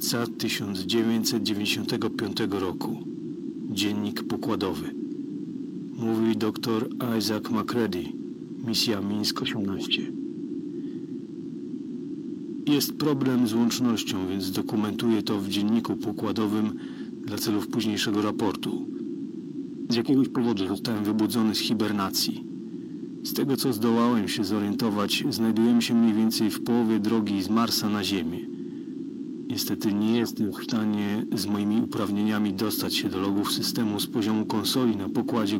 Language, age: Polish, 40-59